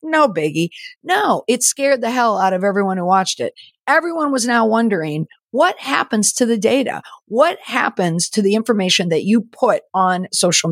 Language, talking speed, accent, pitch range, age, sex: English, 180 wpm, American, 170-245 Hz, 50-69, female